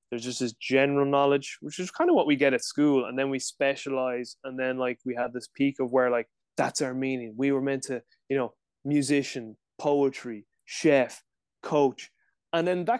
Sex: male